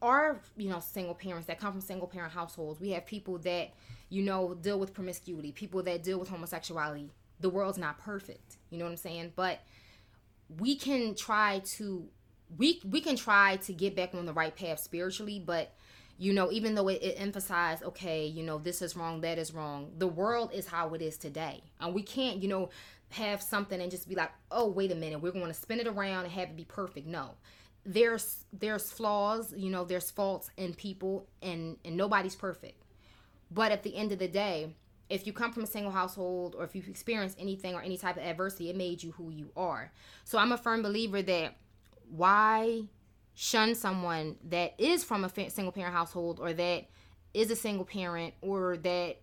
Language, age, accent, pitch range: English, 20-39, American, 165-200 Hz